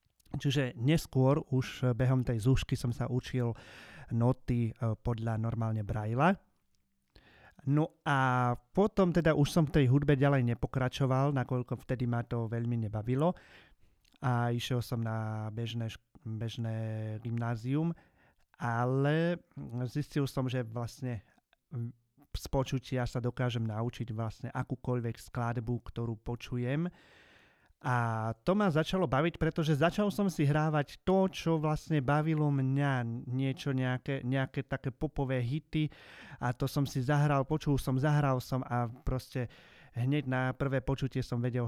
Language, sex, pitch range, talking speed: Slovak, male, 120-150 Hz, 130 wpm